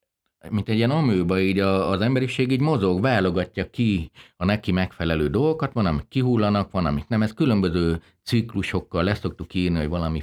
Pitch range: 85-115 Hz